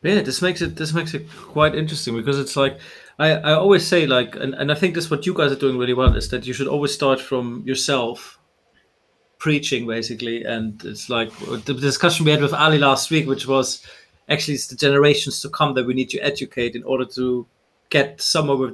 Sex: male